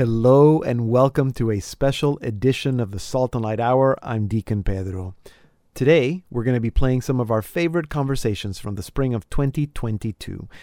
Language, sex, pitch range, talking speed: English, male, 115-155 Hz, 180 wpm